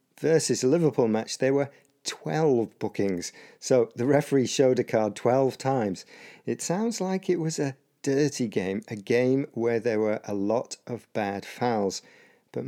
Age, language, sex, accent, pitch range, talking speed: 40-59, English, male, British, 110-140 Hz, 165 wpm